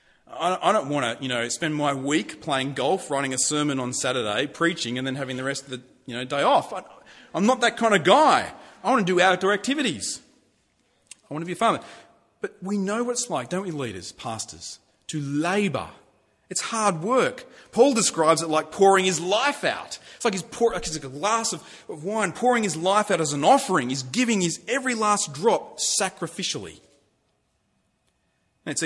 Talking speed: 200 wpm